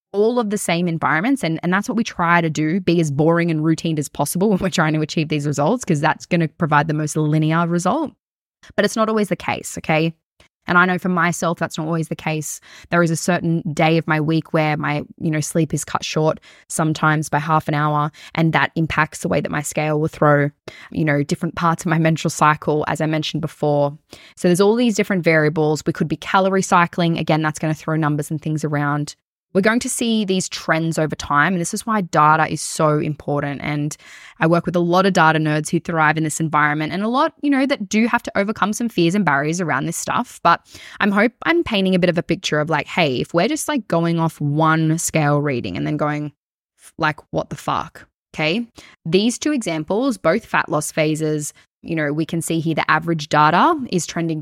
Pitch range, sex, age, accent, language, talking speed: 155-185 Hz, female, 10-29, Australian, English, 235 wpm